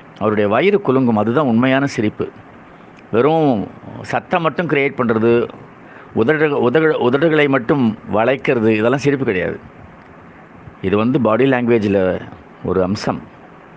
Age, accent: 50-69, native